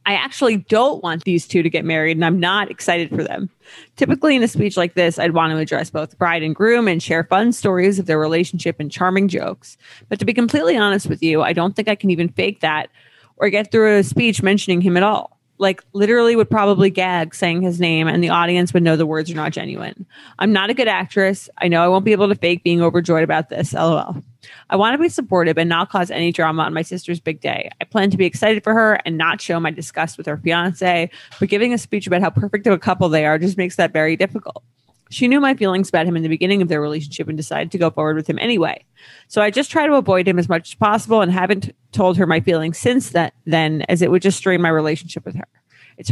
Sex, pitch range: female, 165-205 Hz